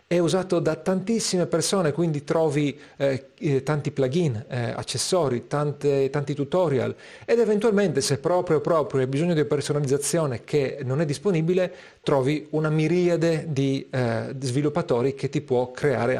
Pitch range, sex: 125-160 Hz, male